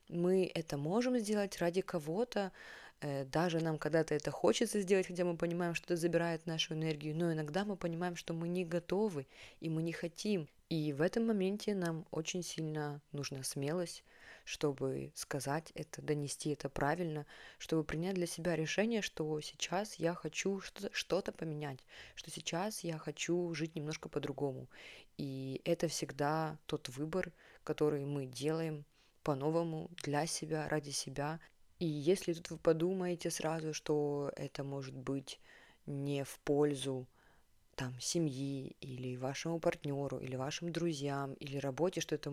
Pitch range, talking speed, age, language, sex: 145-175 Hz, 145 wpm, 20-39, Russian, female